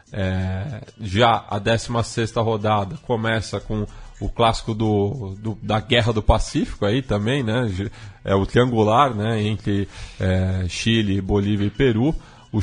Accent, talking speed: Brazilian, 140 wpm